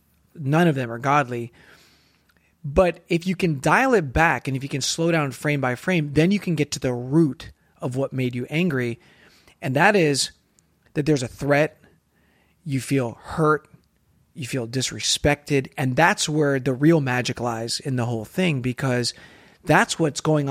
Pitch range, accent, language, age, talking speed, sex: 125-160 Hz, American, English, 30-49, 180 wpm, male